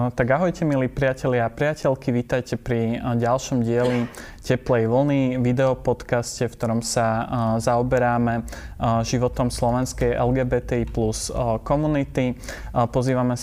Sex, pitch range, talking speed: male, 120-130 Hz, 105 wpm